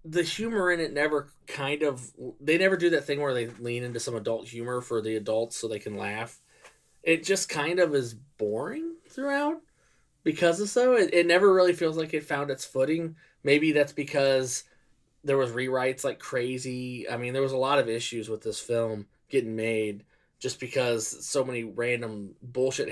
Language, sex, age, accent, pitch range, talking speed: English, male, 20-39, American, 120-160 Hz, 190 wpm